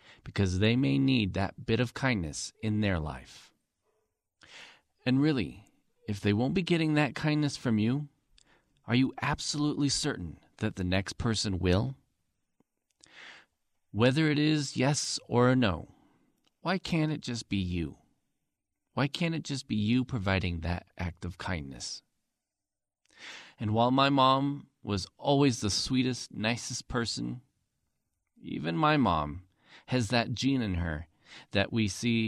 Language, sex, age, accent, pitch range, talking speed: English, male, 40-59, American, 90-135 Hz, 140 wpm